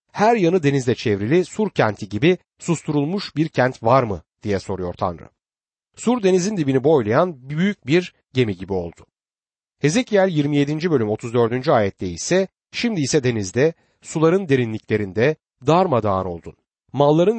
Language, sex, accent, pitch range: Turkish, male, native, 115-175 Hz